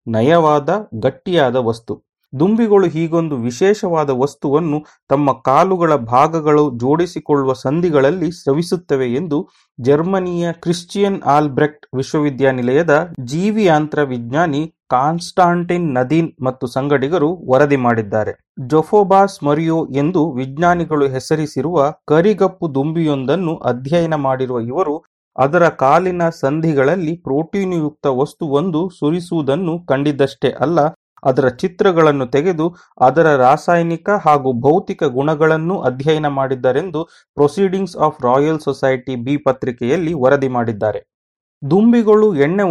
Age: 30-49